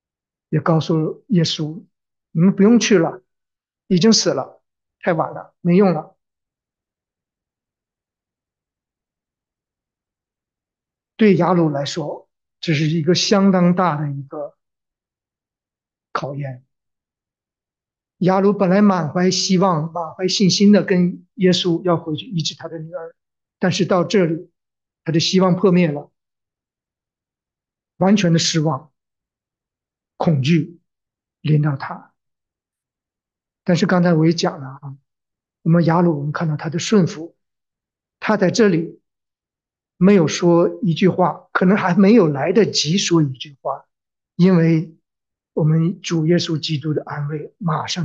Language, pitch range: English, 150-185 Hz